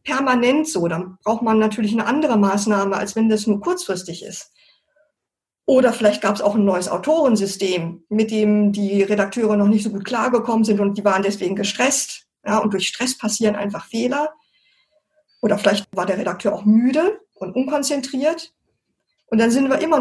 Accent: German